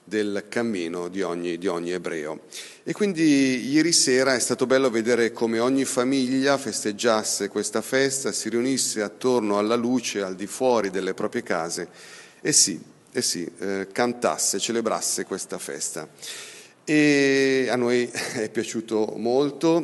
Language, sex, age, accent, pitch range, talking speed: Italian, male, 40-59, native, 105-125 Hz, 150 wpm